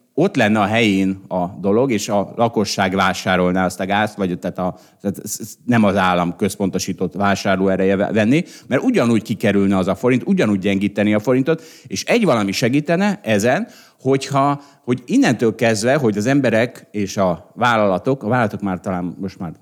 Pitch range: 95-145 Hz